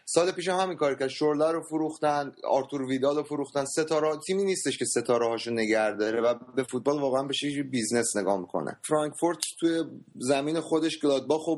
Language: Persian